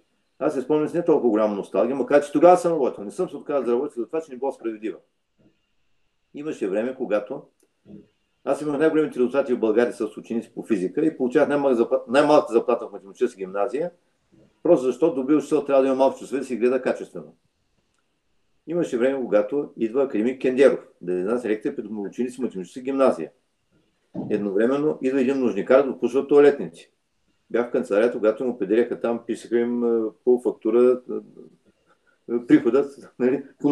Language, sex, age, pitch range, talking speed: Bulgarian, male, 50-69, 120-150 Hz, 175 wpm